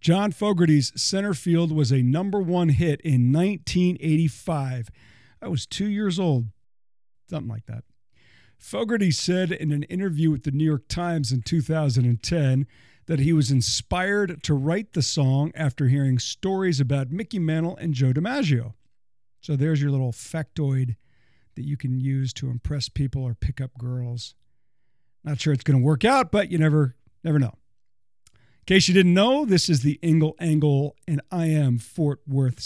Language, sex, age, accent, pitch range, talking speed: English, male, 50-69, American, 125-175 Hz, 165 wpm